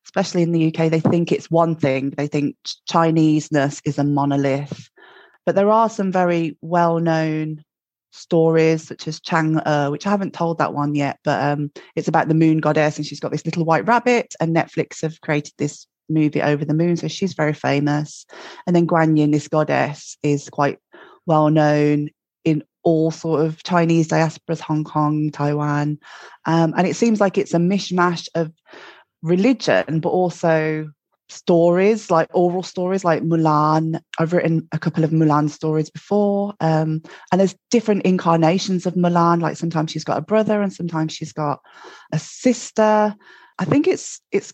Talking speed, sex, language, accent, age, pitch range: 170 wpm, female, English, British, 20-39, 155-180 Hz